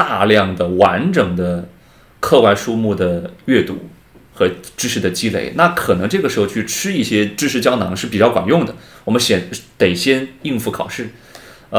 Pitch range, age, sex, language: 95-115 Hz, 30-49, male, Chinese